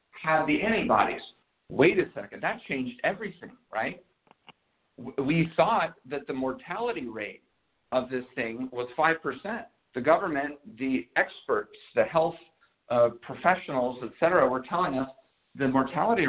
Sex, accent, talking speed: male, American, 135 wpm